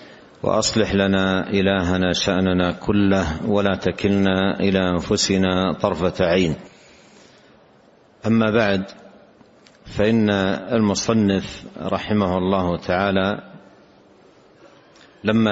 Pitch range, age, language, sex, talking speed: 95-110 Hz, 50-69, Arabic, male, 75 wpm